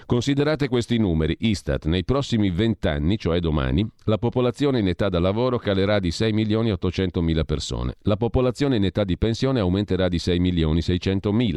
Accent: native